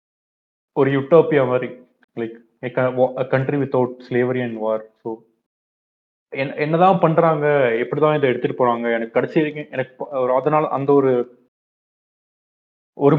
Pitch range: 115-140 Hz